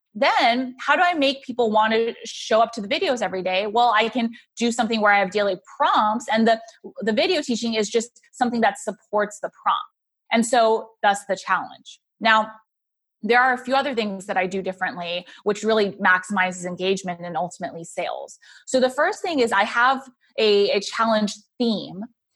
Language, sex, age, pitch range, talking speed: English, female, 20-39, 195-240 Hz, 190 wpm